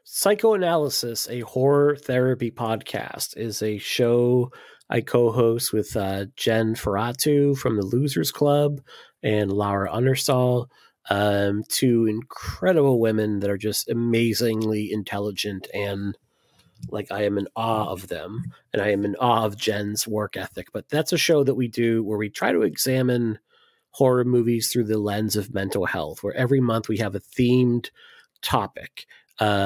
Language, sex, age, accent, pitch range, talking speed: English, male, 30-49, American, 105-125 Hz, 155 wpm